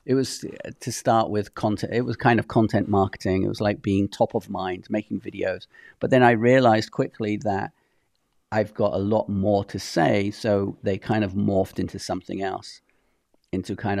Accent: British